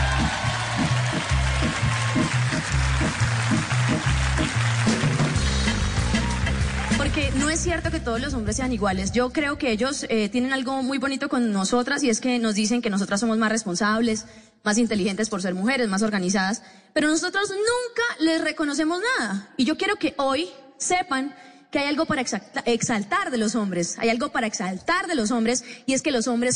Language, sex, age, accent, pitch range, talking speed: Spanish, female, 20-39, Colombian, 215-315 Hz, 160 wpm